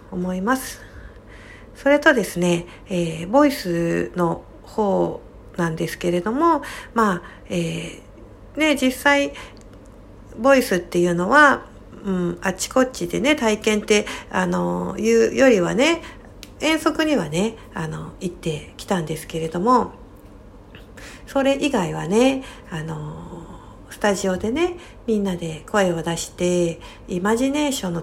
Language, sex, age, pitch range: Japanese, female, 60-79, 165-225 Hz